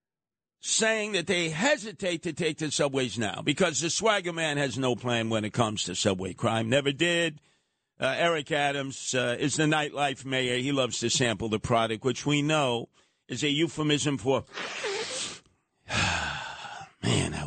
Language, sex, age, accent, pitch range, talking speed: English, male, 50-69, American, 120-155 Hz, 160 wpm